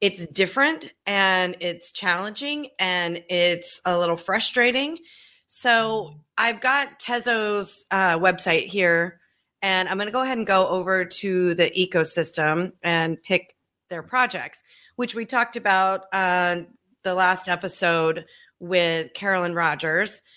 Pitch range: 180-215 Hz